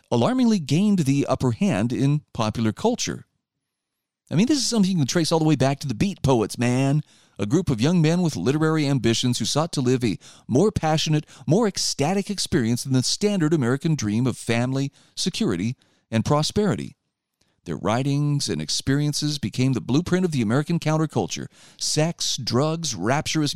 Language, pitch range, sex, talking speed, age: English, 120-165 Hz, male, 170 wpm, 40-59